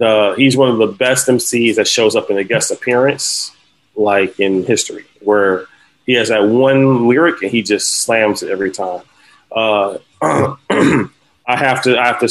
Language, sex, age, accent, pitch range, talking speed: English, male, 40-59, American, 115-150 Hz, 180 wpm